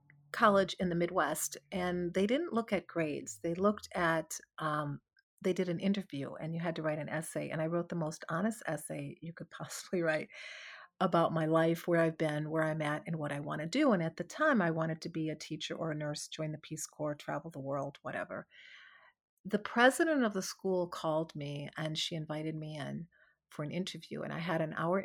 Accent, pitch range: American, 155-190 Hz